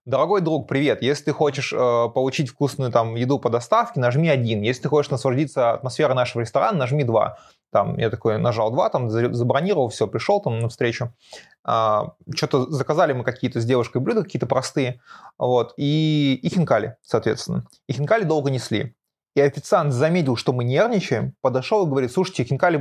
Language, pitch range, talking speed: Russian, 120-155 Hz, 170 wpm